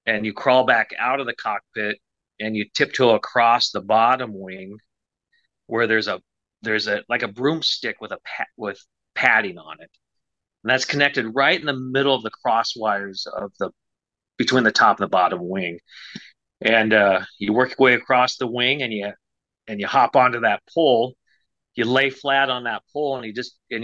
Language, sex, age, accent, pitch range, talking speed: English, male, 40-59, American, 105-135 Hz, 195 wpm